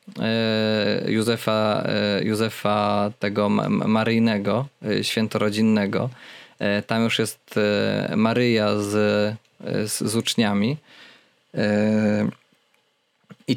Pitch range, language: 110-135 Hz, Polish